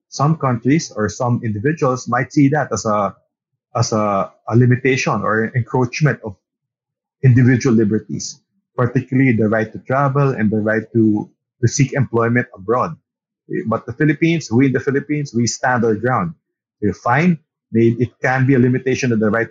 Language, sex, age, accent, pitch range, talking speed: English, male, 30-49, Filipino, 115-140 Hz, 155 wpm